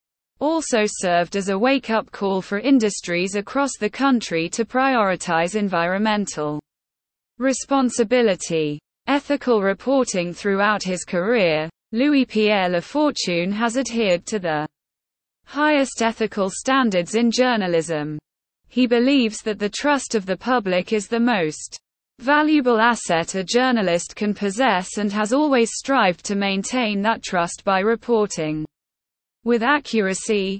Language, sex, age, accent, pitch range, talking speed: English, female, 20-39, British, 185-250 Hz, 120 wpm